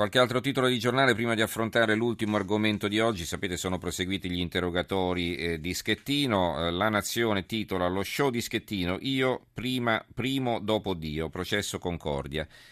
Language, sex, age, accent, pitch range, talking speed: Italian, male, 40-59, native, 85-105 Hz, 165 wpm